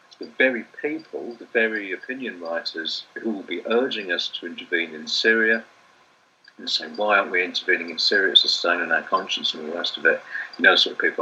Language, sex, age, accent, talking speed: English, male, 50-69, British, 225 wpm